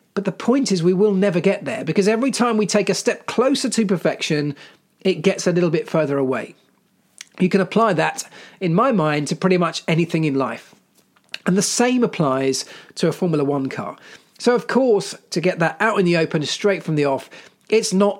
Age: 40-59